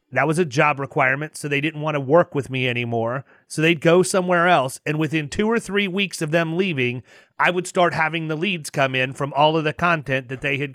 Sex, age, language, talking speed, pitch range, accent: male, 30-49, English, 245 wpm, 135-170 Hz, American